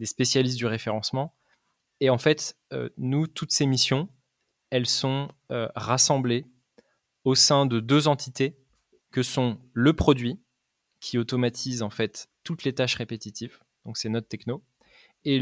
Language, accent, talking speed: French, French, 150 wpm